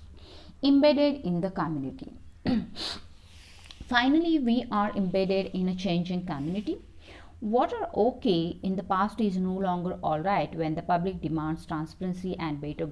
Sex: female